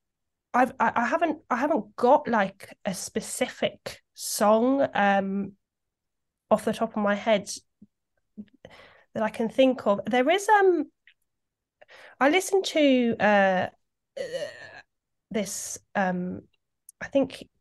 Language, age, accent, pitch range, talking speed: English, 20-39, British, 195-250 Hz, 110 wpm